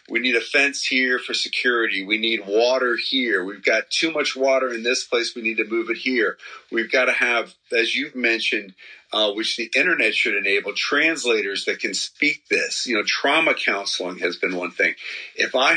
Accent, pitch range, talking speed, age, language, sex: American, 110-145 Hz, 200 wpm, 40-59, English, male